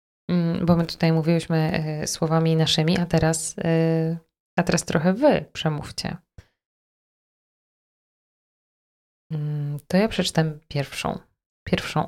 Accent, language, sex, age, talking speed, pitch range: native, Polish, female, 20-39, 90 wpm, 155-175 Hz